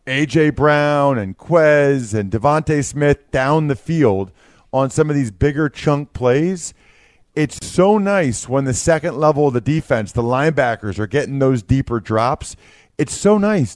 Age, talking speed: 40-59, 160 wpm